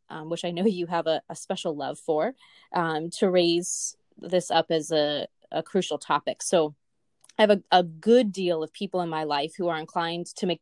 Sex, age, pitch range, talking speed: female, 20-39, 155-195 Hz, 215 wpm